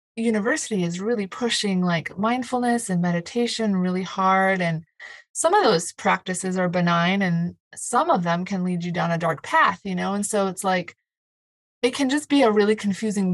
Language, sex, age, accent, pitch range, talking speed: English, female, 30-49, American, 180-225 Hz, 185 wpm